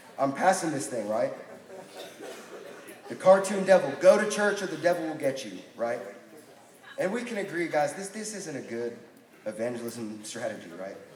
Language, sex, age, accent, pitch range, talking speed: English, male, 30-49, American, 110-170 Hz, 165 wpm